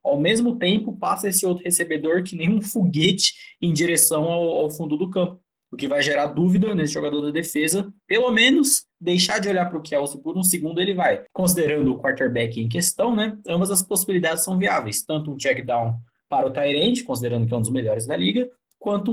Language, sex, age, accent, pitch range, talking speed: Portuguese, male, 20-39, Brazilian, 140-185 Hz, 205 wpm